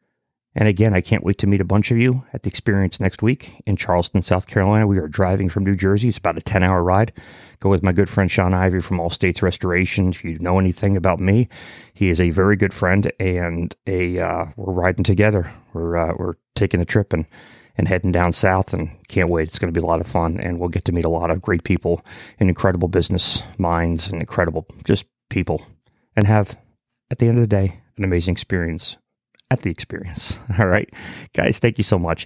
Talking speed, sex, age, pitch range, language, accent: 225 wpm, male, 30-49, 90-105 Hz, English, American